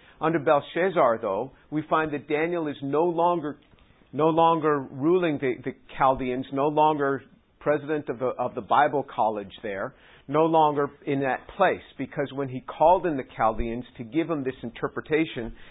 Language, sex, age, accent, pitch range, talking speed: English, male, 50-69, American, 135-170 Hz, 165 wpm